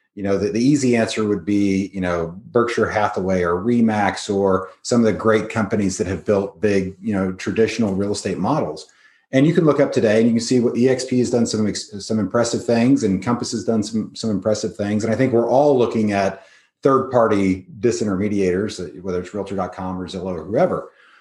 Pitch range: 100-125 Hz